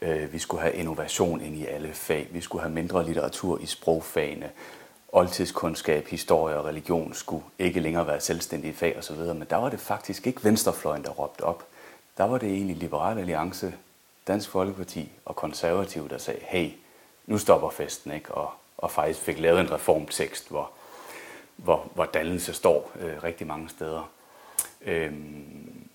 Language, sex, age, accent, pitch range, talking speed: Danish, male, 30-49, native, 80-100 Hz, 160 wpm